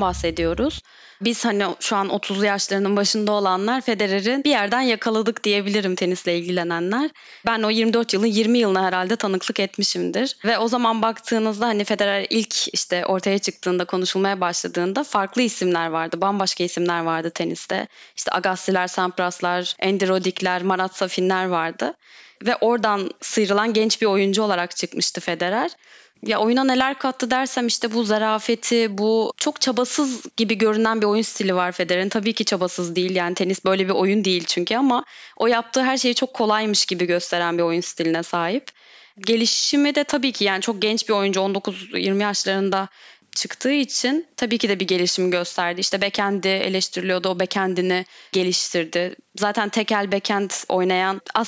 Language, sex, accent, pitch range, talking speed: Turkish, female, native, 185-230 Hz, 155 wpm